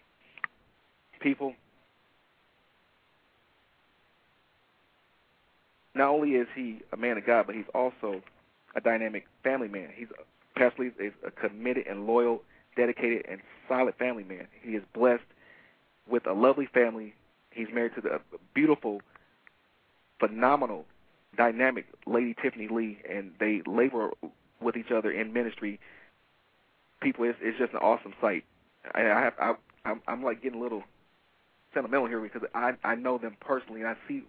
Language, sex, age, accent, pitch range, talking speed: English, male, 40-59, American, 110-130 Hz, 140 wpm